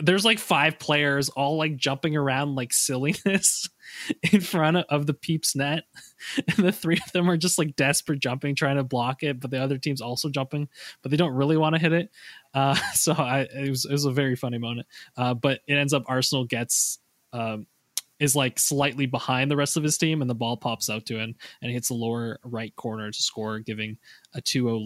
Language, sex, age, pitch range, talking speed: English, male, 20-39, 125-155 Hz, 220 wpm